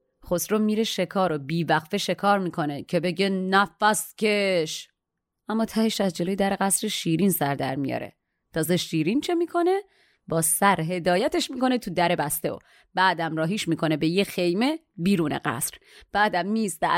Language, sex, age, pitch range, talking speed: Persian, female, 30-49, 170-225 Hz, 150 wpm